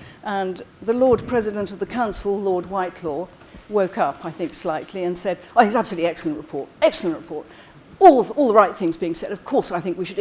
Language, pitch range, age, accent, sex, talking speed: English, 175-235 Hz, 50-69, British, female, 215 wpm